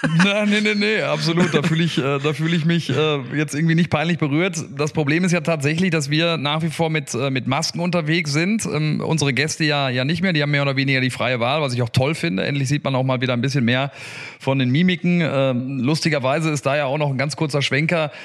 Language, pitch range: German, 130-165 Hz